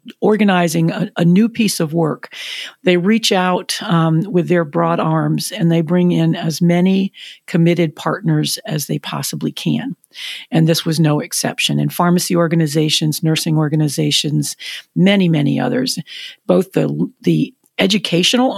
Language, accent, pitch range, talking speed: English, American, 160-205 Hz, 140 wpm